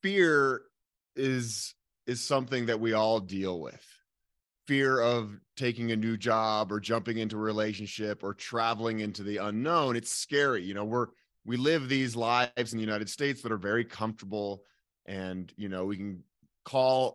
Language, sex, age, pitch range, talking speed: English, male, 30-49, 110-130 Hz, 170 wpm